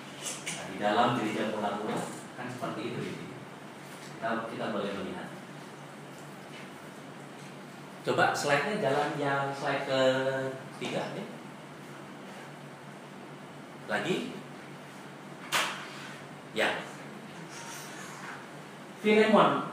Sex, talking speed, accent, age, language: male, 65 wpm, native, 40-59, Indonesian